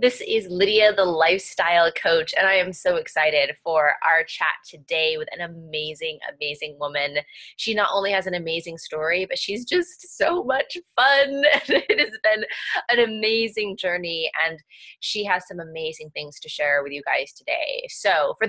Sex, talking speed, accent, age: female, 170 wpm, American, 20-39